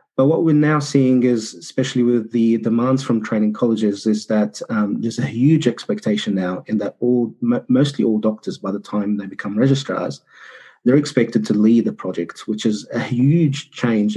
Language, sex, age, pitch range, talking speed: English, male, 30-49, 105-130 Hz, 185 wpm